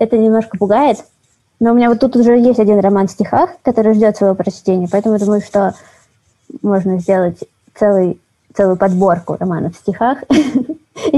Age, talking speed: 20-39, 165 wpm